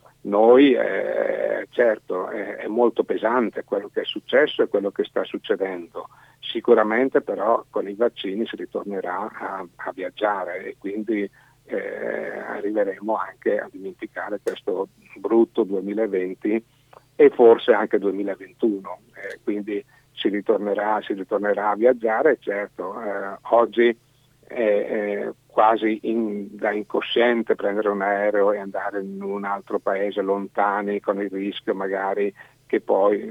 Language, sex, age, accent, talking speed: Italian, male, 50-69, native, 130 wpm